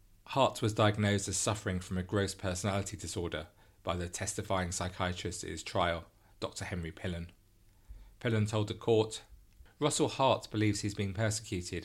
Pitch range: 95-105 Hz